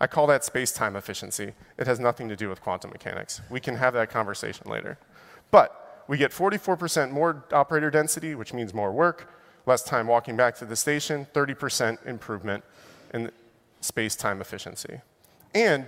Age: 30-49